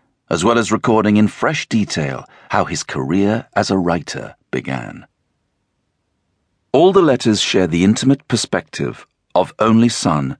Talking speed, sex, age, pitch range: 140 wpm, male, 50-69, 85-115 Hz